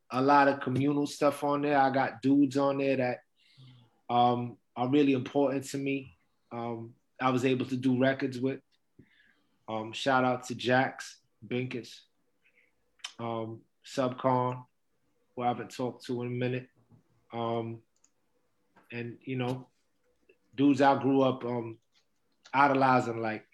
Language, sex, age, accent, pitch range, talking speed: English, male, 20-39, American, 120-135 Hz, 140 wpm